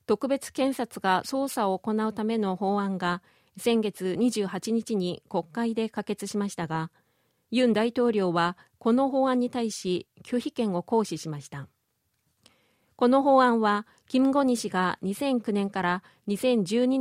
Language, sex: Japanese, female